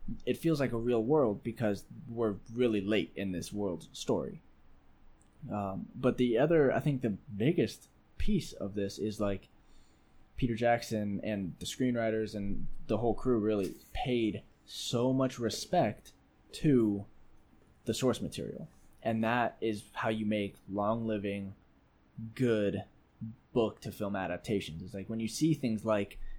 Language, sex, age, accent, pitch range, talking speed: English, male, 20-39, American, 95-115 Hz, 150 wpm